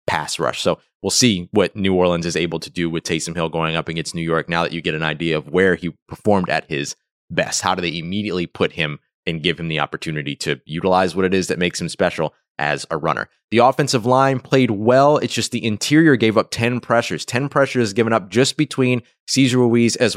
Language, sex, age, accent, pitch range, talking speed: English, male, 20-39, American, 90-120 Hz, 230 wpm